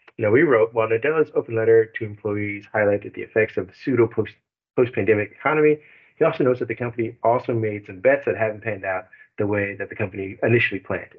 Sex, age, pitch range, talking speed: male, 40-59, 100-120 Hz, 205 wpm